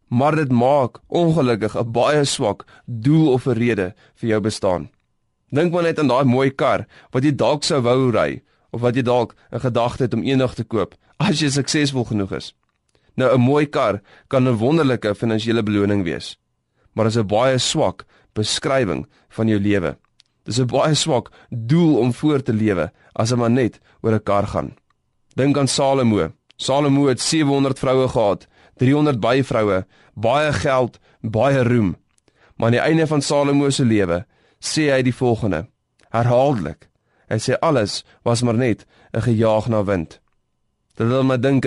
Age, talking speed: 20-39, 175 wpm